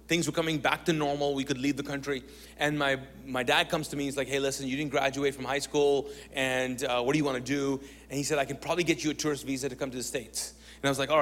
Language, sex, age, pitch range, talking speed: English, male, 30-49, 125-150 Hz, 305 wpm